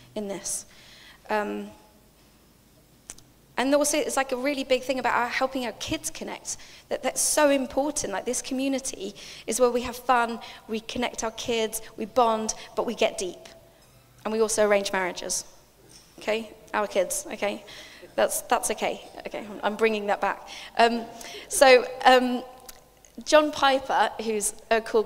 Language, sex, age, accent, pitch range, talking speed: English, female, 20-39, British, 205-255 Hz, 155 wpm